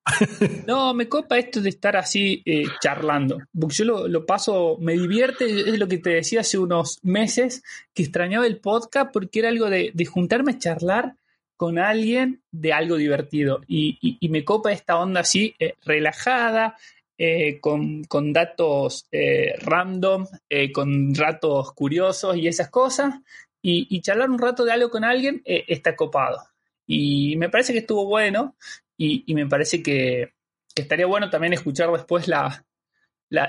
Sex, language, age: male, Spanish, 20-39